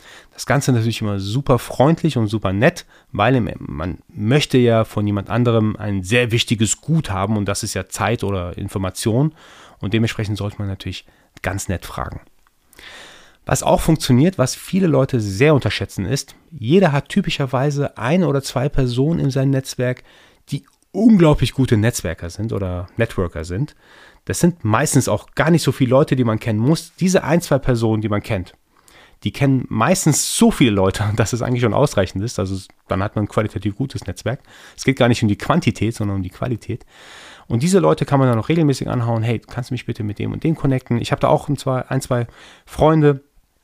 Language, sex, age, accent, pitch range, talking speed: German, male, 30-49, German, 105-140 Hz, 195 wpm